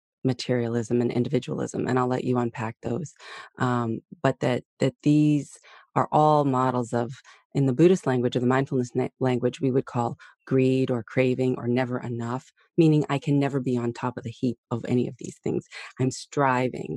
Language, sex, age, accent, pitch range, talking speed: English, female, 30-49, American, 125-155 Hz, 185 wpm